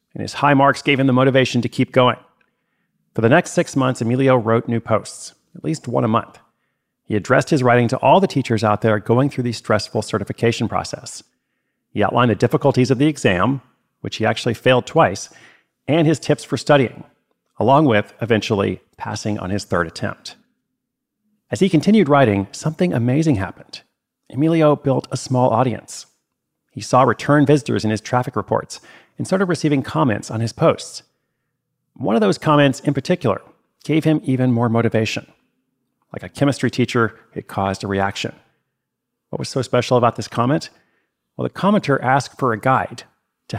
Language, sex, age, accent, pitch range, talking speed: English, male, 40-59, American, 110-140 Hz, 175 wpm